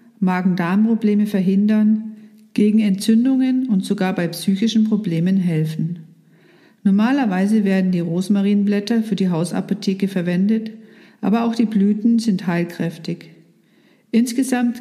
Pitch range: 185-220 Hz